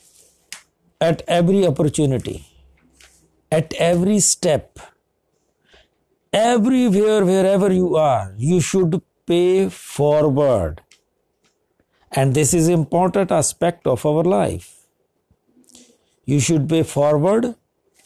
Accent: native